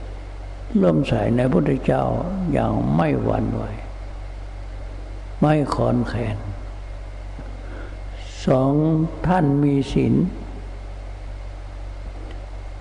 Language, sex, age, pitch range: Thai, male, 60-79, 95-130 Hz